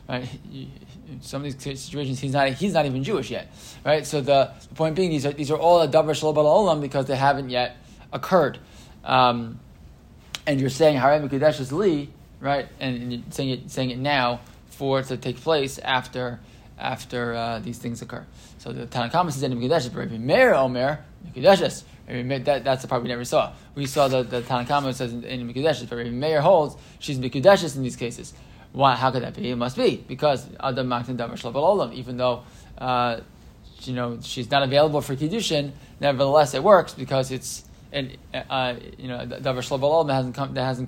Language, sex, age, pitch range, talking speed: English, male, 20-39, 125-145 Hz, 180 wpm